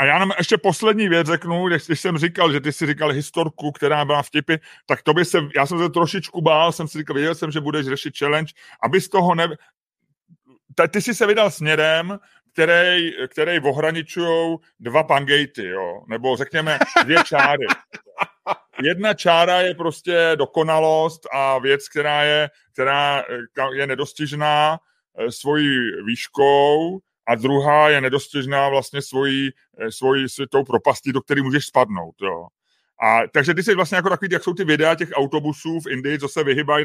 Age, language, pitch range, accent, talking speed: 30-49, Czech, 140-170 Hz, native, 160 wpm